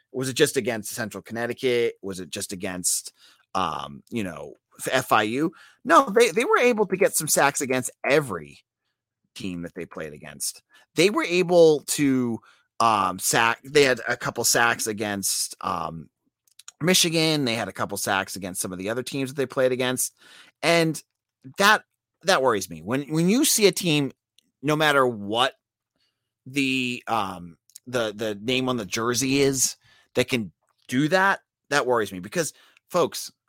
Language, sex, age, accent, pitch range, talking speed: English, male, 30-49, American, 115-165 Hz, 165 wpm